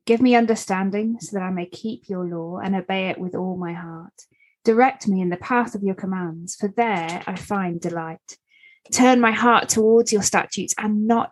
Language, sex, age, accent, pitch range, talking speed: English, female, 20-39, British, 180-225 Hz, 200 wpm